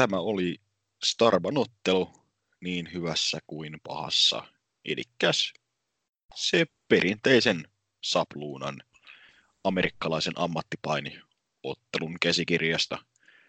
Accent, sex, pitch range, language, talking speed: Finnish, male, 80-100 Hz, English, 60 wpm